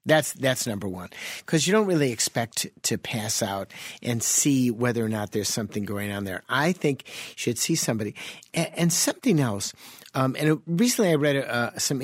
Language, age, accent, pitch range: English, 50-69, American, 115-160 Hz